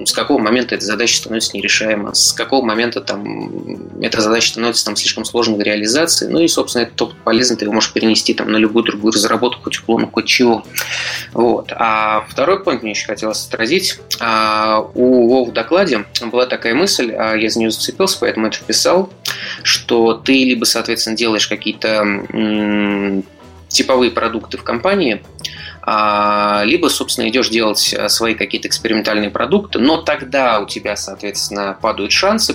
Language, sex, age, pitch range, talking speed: Russian, male, 20-39, 105-120 Hz, 160 wpm